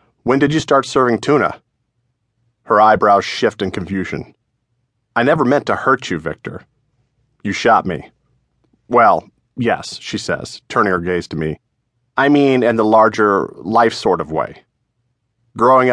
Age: 30-49